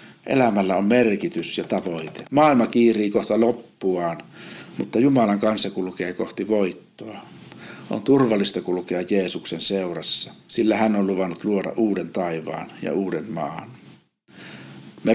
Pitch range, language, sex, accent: 100-130 Hz, Finnish, male, native